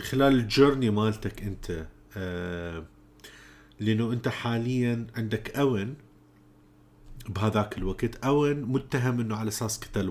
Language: Arabic